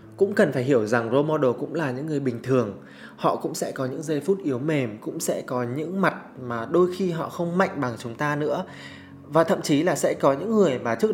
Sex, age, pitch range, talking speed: male, 20-39, 115-155 Hz, 255 wpm